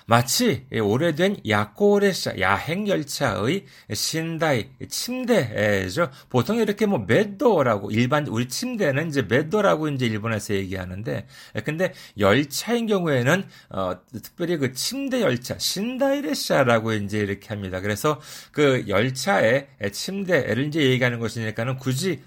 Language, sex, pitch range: Korean, male, 115-185 Hz